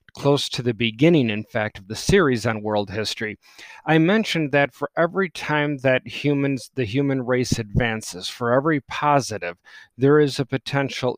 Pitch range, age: 120-150 Hz, 40-59